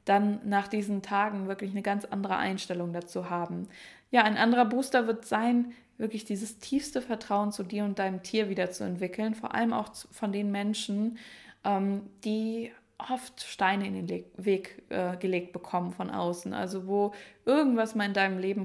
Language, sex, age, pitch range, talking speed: German, female, 20-39, 190-225 Hz, 165 wpm